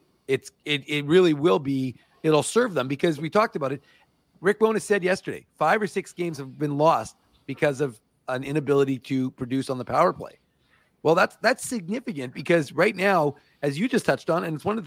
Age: 40-59